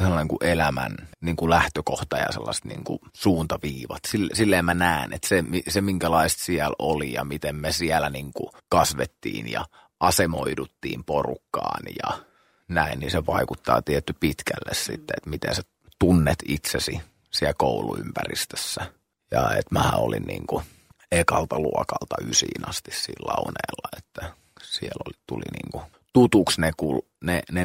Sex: male